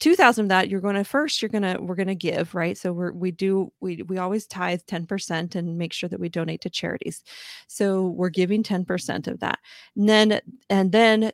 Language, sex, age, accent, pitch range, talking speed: English, female, 30-49, American, 180-220 Hz, 220 wpm